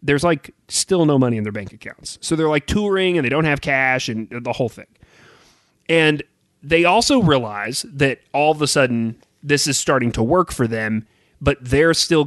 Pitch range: 115-155 Hz